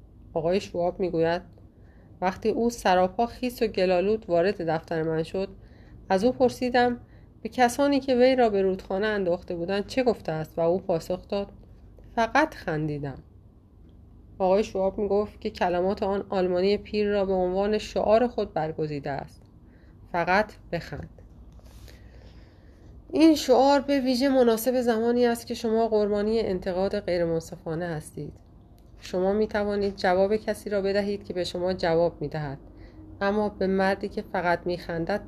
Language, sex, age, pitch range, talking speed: Persian, female, 30-49, 170-225 Hz, 145 wpm